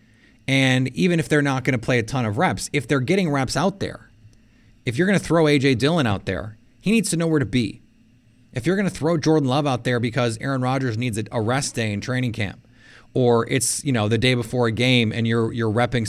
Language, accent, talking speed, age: English, American, 245 wpm, 30-49